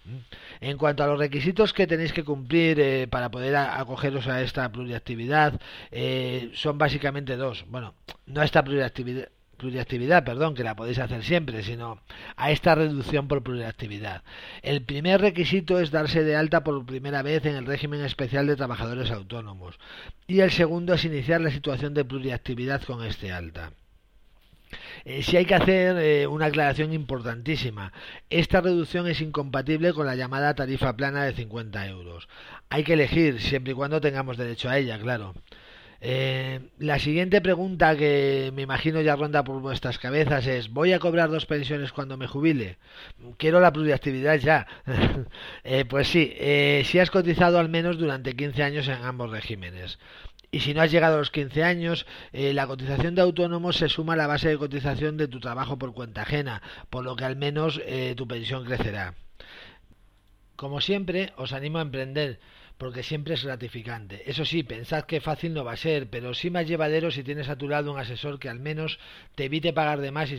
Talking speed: 180 wpm